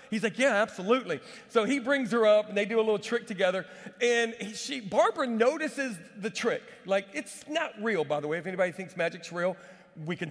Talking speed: 215 wpm